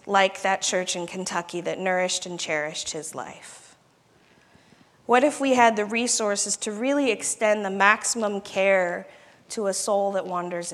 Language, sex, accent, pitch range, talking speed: English, female, American, 175-220 Hz, 155 wpm